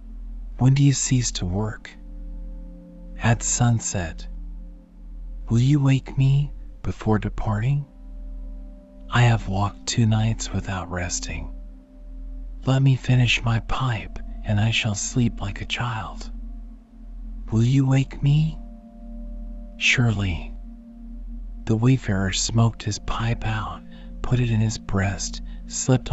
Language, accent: English, American